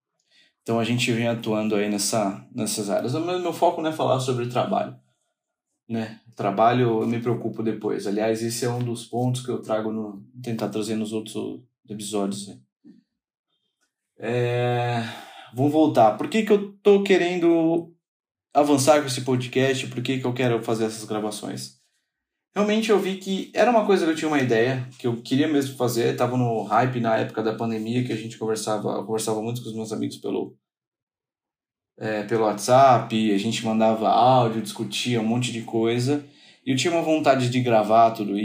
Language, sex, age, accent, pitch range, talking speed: Portuguese, male, 20-39, Brazilian, 110-135 Hz, 185 wpm